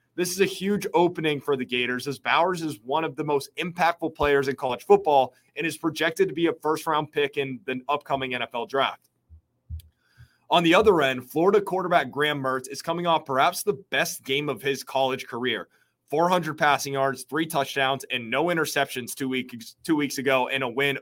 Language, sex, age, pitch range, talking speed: English, male, 30-49, 130-165 Hz, 190 wpm